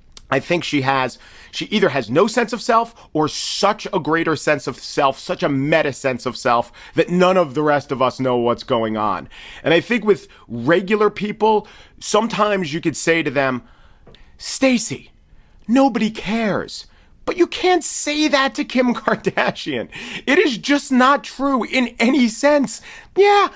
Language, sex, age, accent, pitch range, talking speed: English, male, 40-59, American, 130-205 Hz, 170 wpm